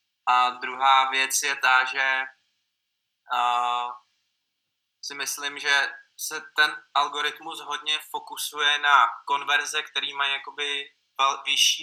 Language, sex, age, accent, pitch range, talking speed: Czech, male, 20-39, native, 130-140 Hz, 100 wpm